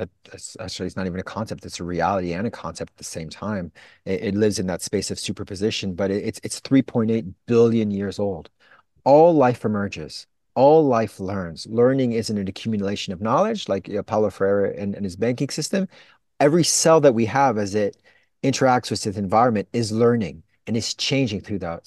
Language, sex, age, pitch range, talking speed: English, male, 30-49, 100-135 Hz, 190 wpm